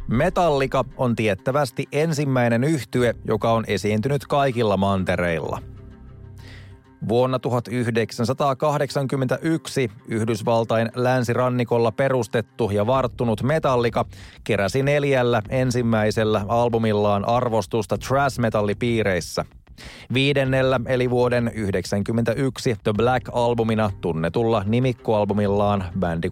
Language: Finnish